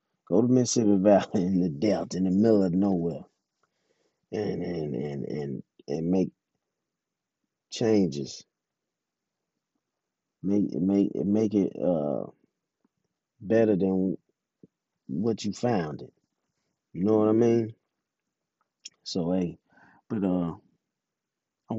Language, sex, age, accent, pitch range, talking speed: English, male, 30-49, American, 90-105 Hz, 110 wpm